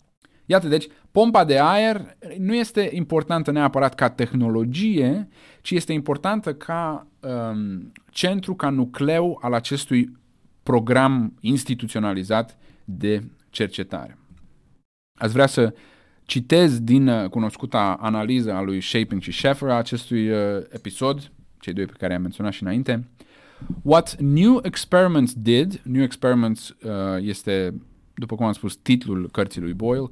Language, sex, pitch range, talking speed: Romanian, male, 110-145 Hz, 125 wpm